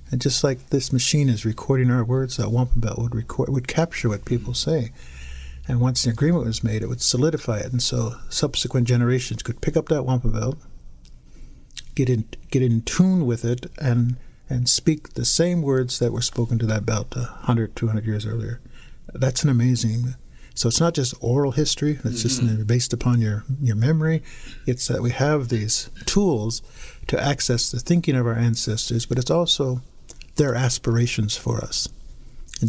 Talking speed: 180 wpm